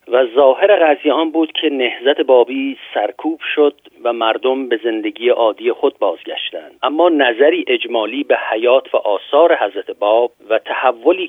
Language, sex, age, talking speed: Persian, male, 50-69, 145 wpm